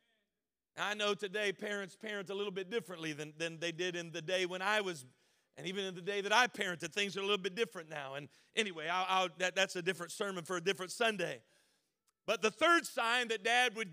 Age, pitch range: 40-59, 190-245 Hz